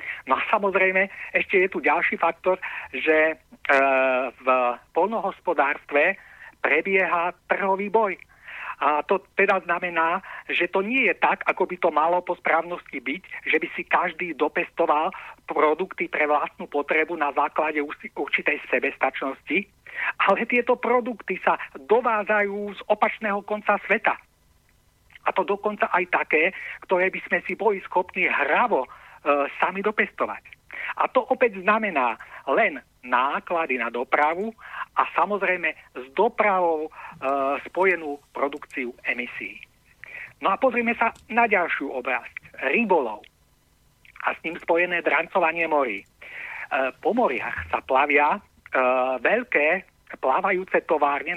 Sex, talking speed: male, 125 wpm